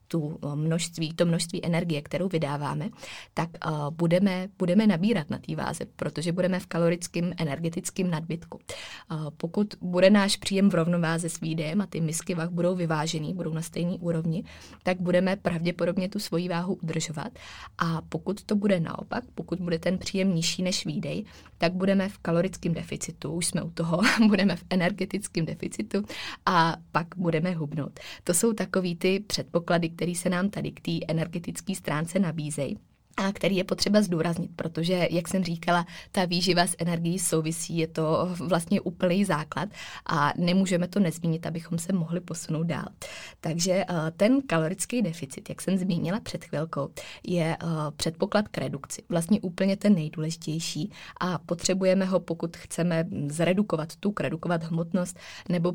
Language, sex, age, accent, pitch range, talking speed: Czech, female, 20-39, native, 165-185 Hz, 155 wpm